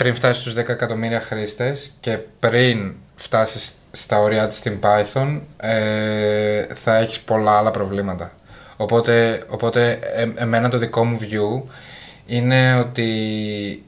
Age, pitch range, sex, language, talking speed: 20-39, 105-120 Hz, male, Greek, 120 wpm